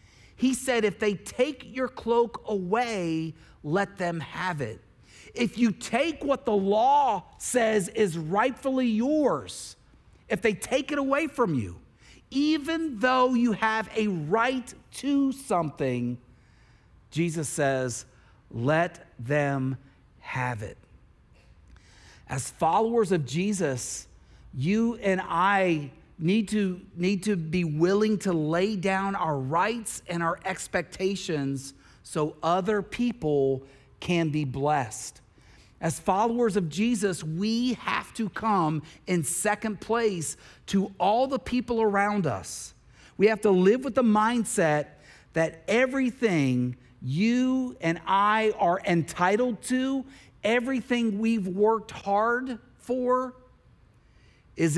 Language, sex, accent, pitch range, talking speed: English, male, American, 155-230 Hz, 115 wpm